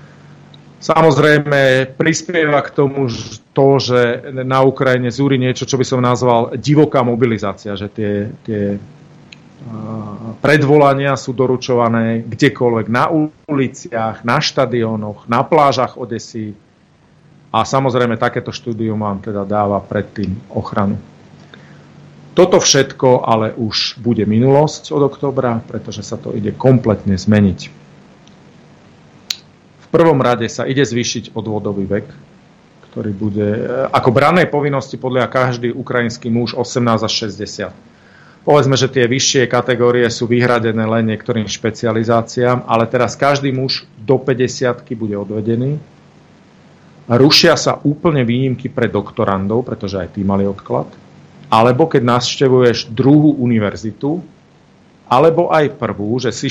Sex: male